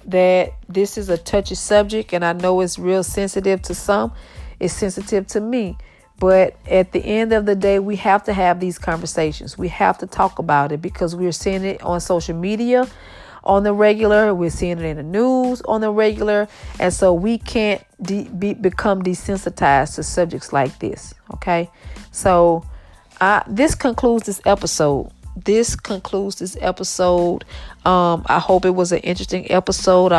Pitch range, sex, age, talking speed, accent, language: 175-200 Hz, female, 40-59, 170 wpm, American, English